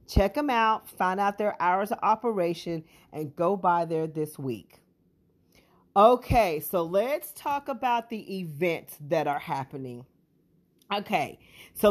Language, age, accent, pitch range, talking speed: English, 40-59, American, 155-210 Hz, 135 wpm